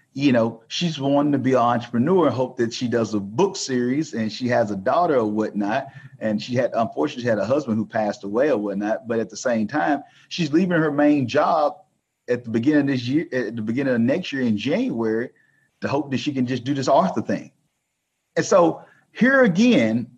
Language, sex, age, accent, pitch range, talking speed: English, male, 40-59, American, 115-155 Hz, 220 wpm